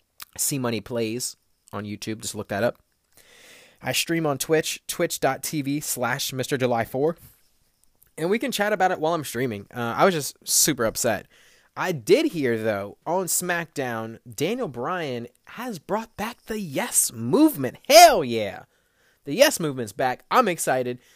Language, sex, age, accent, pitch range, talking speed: English, male, 20-39, American, 115-150 Hz, 155 wpm